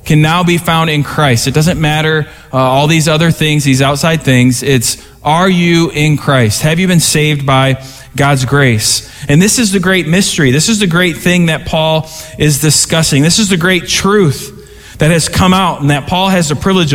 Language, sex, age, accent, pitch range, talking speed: English, male, 20-39, American, 130-180 Hz, 210 wpm